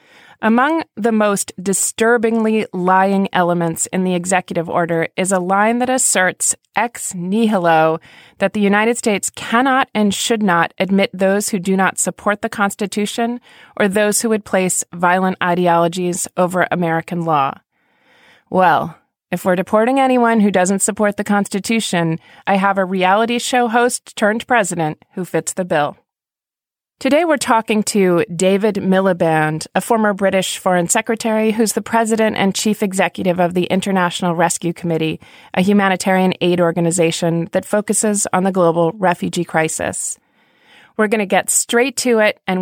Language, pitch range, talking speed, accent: English, 180-220 Hz, 150 wpm, American